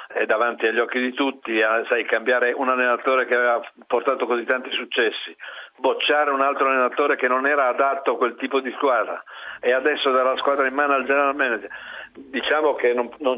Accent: native